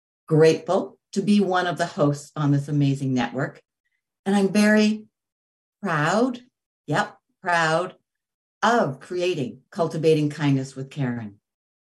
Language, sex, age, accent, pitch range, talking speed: English, female, 60-79, American, 150-215 Hz, 115 wpm